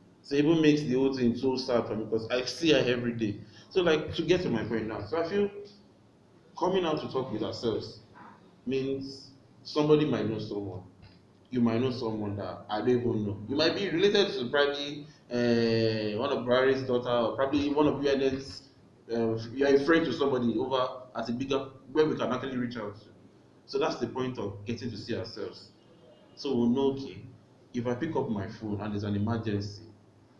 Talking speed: 205 wpm